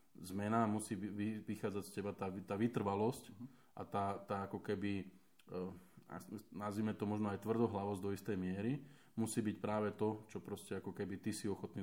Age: 20-39